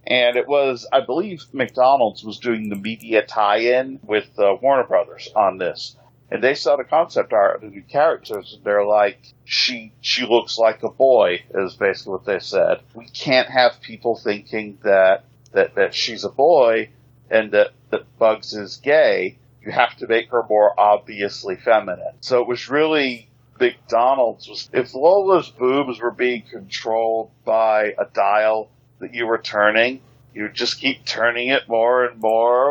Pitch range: 105-125 Hz